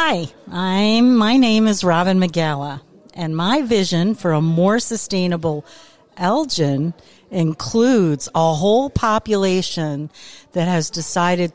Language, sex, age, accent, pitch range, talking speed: English, female, 50-69, American, 165-205 Hz, 115 wpm